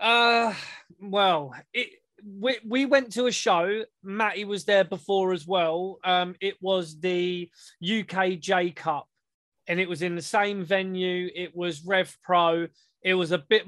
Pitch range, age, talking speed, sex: 170-200 Hz, 20-39, 160 wpm, male